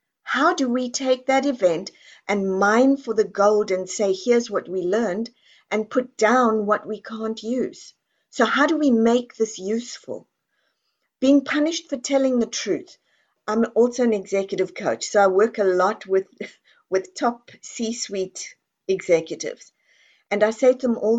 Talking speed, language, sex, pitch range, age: 165 wpm, English, female, 200-255 Hz, 50-69